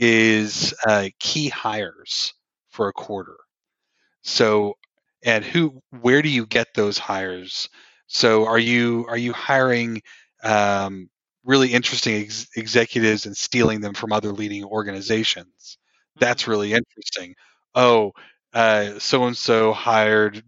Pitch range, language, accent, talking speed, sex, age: 105-115 Hz, English, American, 120 wpm, male, 30-49